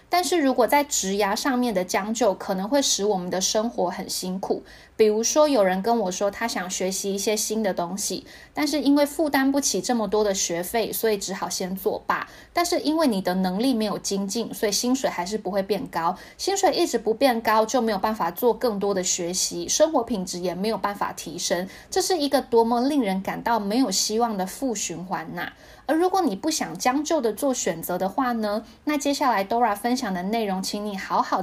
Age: 20-39